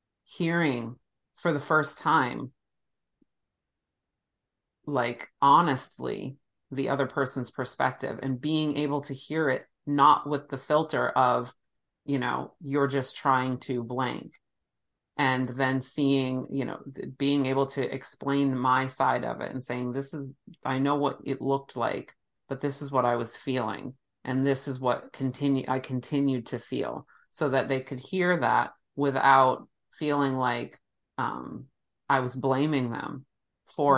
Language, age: English, 40-59